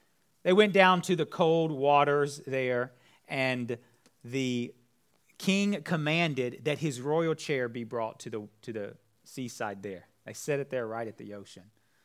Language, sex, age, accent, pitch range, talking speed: English, male, 30-49, American, 125-195 Hz, 160 wpm